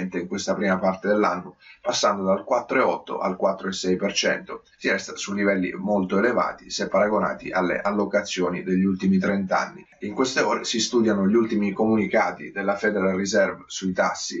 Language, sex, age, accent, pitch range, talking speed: Italian, male, 30-49, native, 95-110 Hz, 155 wpm